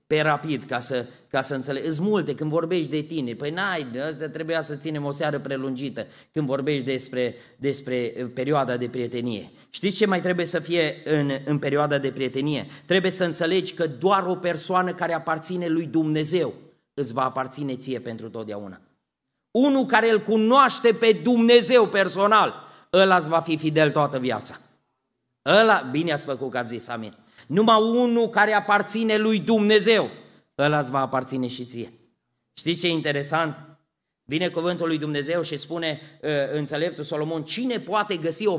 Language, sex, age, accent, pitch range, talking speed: Romanian, male, 30-49, native, 140-210 Hz, 170 wpm